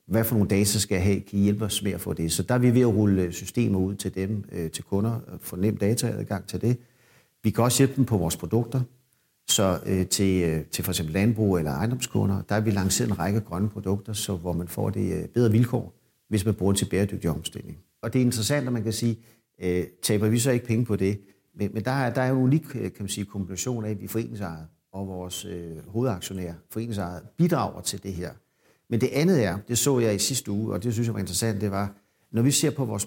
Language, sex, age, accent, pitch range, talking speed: Danish, male, 50-69, native, 95-115 Hz, 240 wpm